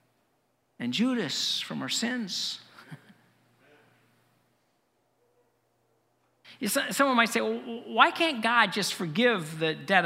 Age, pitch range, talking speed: 50-69, 170-240 Hz, 95 wpm